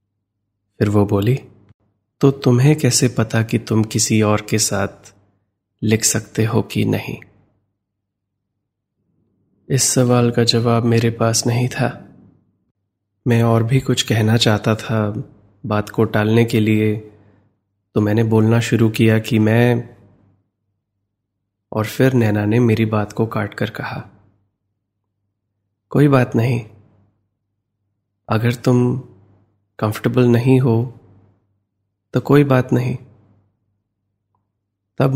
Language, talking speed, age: Hindi, 115 wpm, 20-39